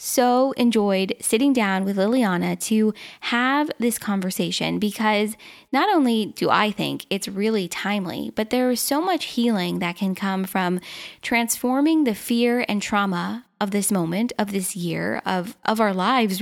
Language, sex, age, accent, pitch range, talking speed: English, female, 10-29, American, 190-240 Hz, 160 wpm